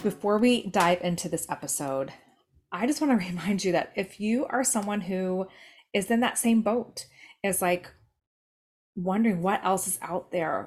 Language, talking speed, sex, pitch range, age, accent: English, 175 wpm, female, 165-210 Hz, 20-39, American